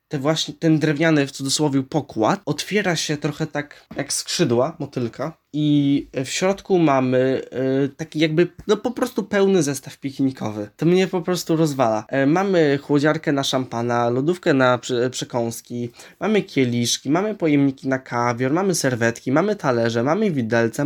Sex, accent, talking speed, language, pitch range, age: male, native, 150 wpm, Polish, 130-175 Hz, 20-39